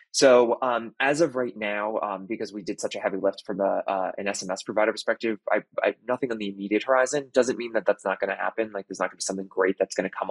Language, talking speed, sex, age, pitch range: English, 280 wpm, male, 20-39, 100-120 Hz